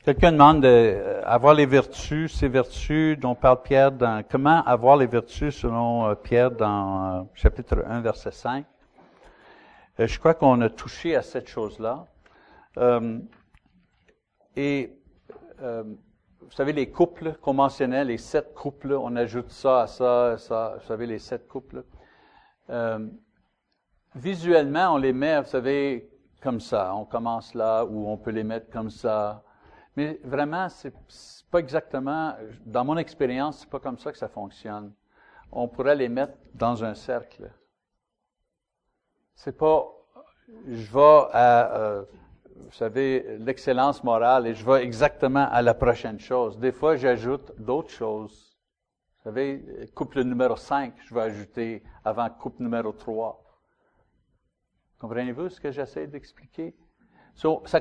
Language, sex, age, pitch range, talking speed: French, male, 60-79, 115-145 Hz, 145 wpm